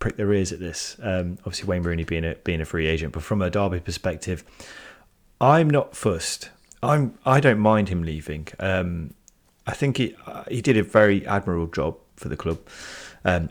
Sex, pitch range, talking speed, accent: male, 80-95 Hz, 200 wpm, British